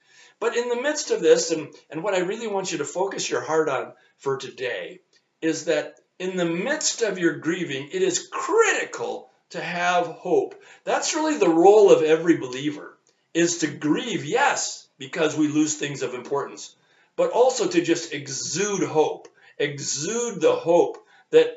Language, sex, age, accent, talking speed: English, male, 50-69, American, 170 wpm